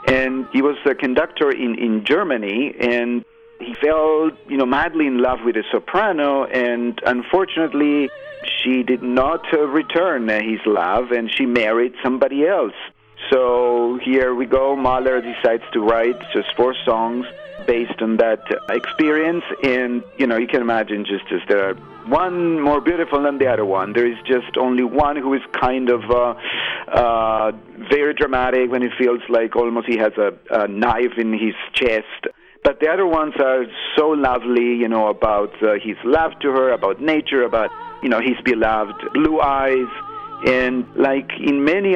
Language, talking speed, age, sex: English, 170 wpm, 50-69, male